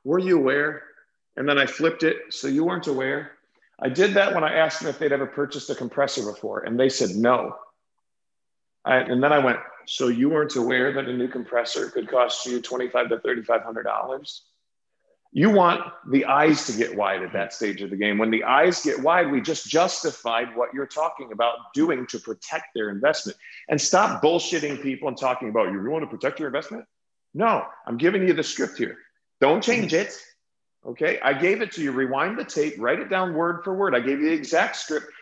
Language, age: English, 50-69